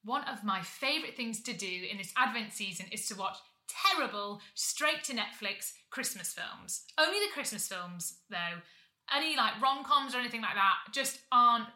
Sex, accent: female, British